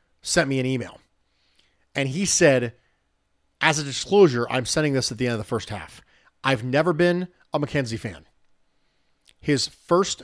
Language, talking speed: English, 165 wpm